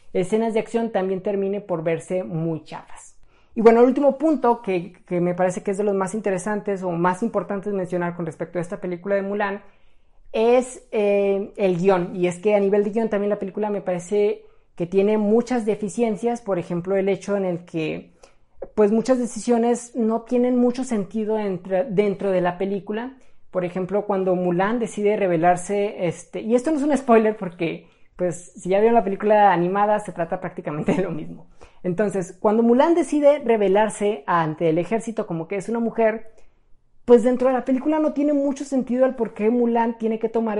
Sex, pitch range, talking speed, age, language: female, 180-225 Hz, 190 wpm, 20-39, Spanish